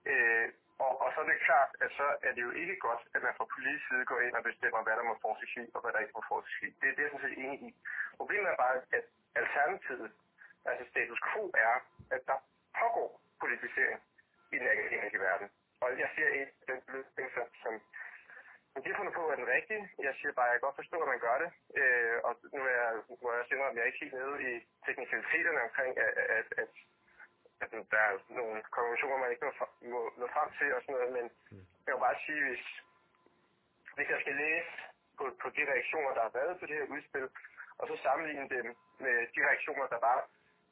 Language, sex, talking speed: Danish, male, 215 wpm